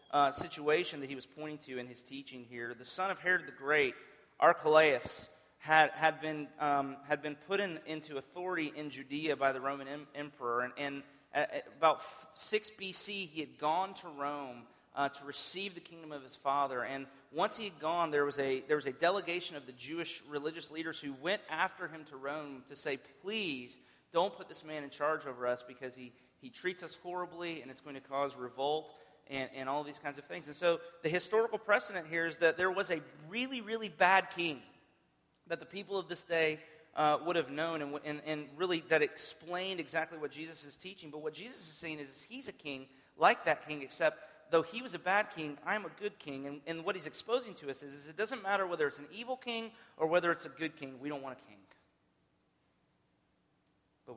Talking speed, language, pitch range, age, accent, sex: 220 wpm, English, 140-175 Hz, 30-49, American, male